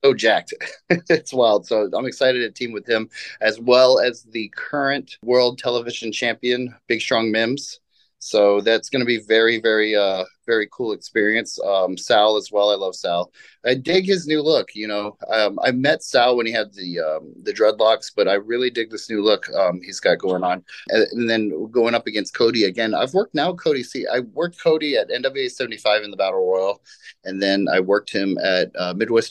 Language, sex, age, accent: English, male, 30-49, American